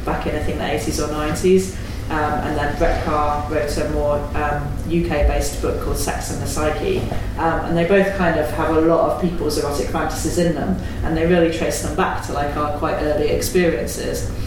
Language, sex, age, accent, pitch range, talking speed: English, female, 30-49, British, 150-180 Hz, 215 wpm